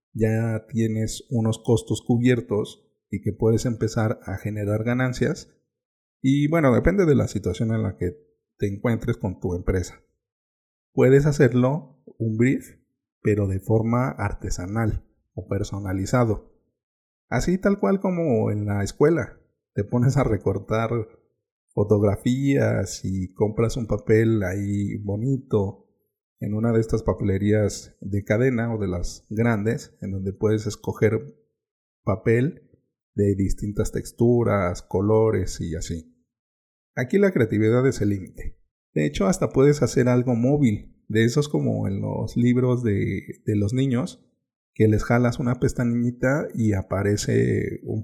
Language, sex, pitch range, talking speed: Spanish, male, 100-125 Hz, 135 wpm